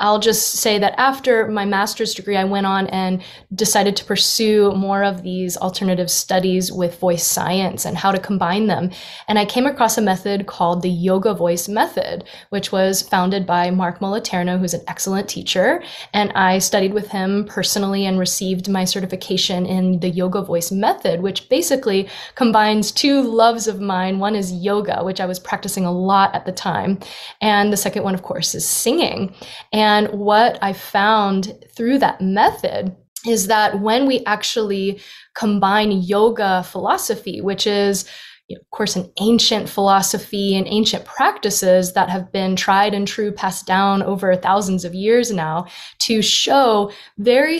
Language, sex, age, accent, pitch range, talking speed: English, female, 20-39, American, 185-215 Hz, 165 wpm